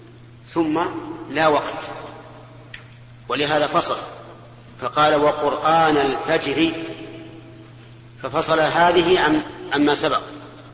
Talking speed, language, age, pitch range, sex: 65 wpm, Arabic, 40-59, 120-160 Hz, male